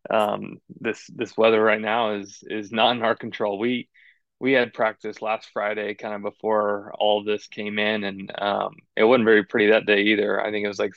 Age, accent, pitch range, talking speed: 20-39, American, 105-115 Hz, 220 wpm